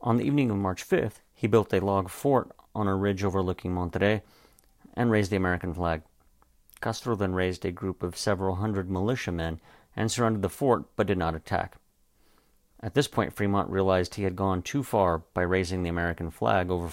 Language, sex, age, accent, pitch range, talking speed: English, male, 50-69, American, 85-110 Hz, 190 wpm